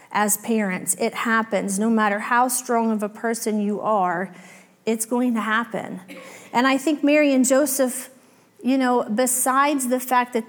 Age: 30-49